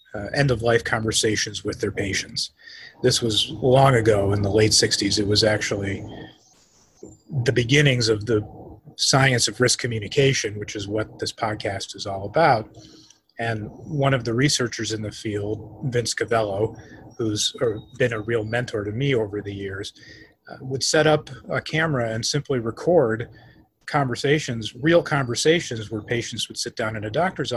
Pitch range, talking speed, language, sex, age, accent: 110-130 Hz, 165 wpm, English, male, 30-49, American